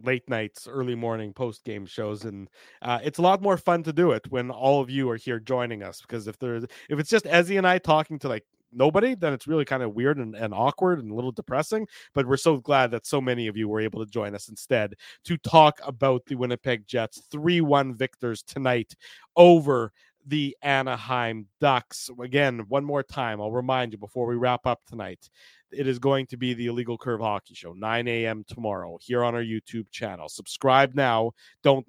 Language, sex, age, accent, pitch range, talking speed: English, male, 30-49, American, 120-140 Hz, 210 wpm